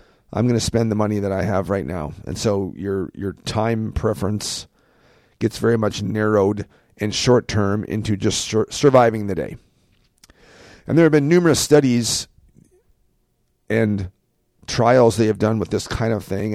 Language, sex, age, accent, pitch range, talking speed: English, male, 40-59, American, 105-125 Hz, 165 wpm